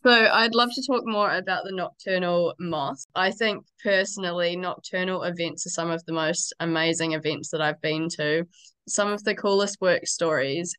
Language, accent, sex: English, Australian, female